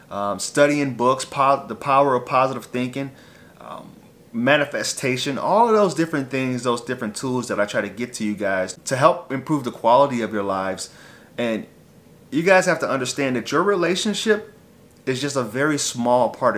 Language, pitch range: English, 110-145 Hz